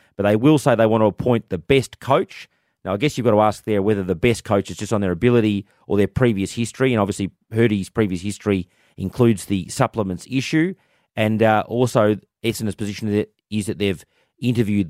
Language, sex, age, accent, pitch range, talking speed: English, male, 30-49, Australian, 100-120 Hz, 200 wpm